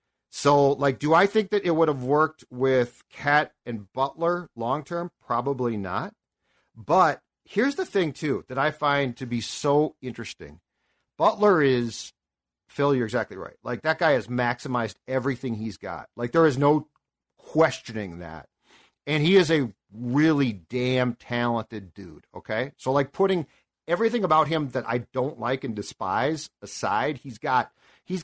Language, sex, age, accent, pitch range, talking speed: English, male, 50-69, American, 120-155 Hz, 160 wpm